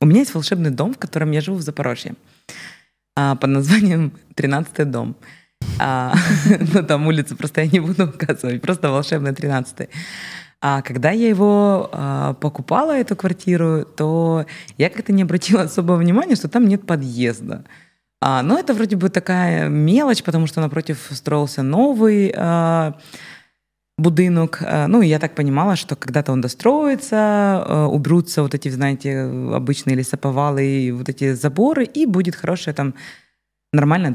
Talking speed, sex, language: 135 wpm, female, Ukrainian